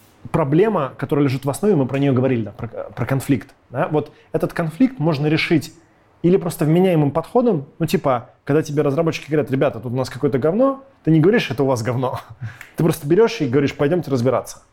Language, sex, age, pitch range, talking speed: Russian, male, 20-39, 120-160 Hz, 200 wpm